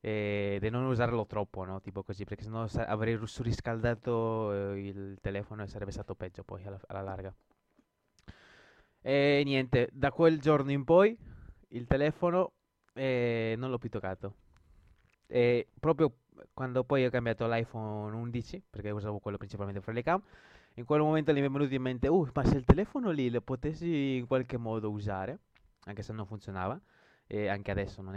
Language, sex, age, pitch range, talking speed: Italian, male, 20-39, 100-130 Hz, 165 wpm